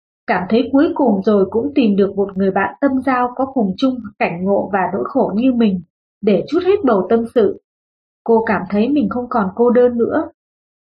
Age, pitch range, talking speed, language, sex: 20-39, 210-265 Hz, 210 wpm, Vietnamese, female